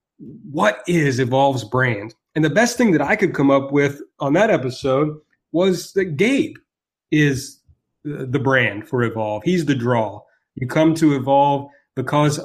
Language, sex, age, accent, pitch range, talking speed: English, male, 30-49, American, 125-165 Hz, 160 wpm